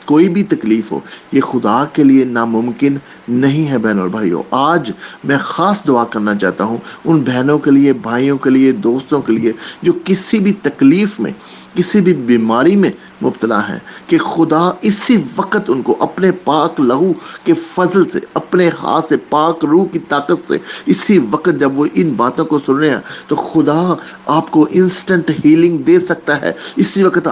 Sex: male